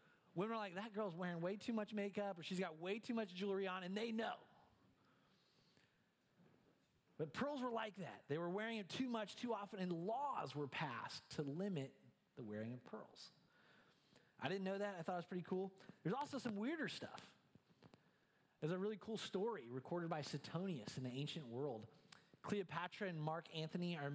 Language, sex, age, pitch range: English, male, 30-49, 135-185 Hz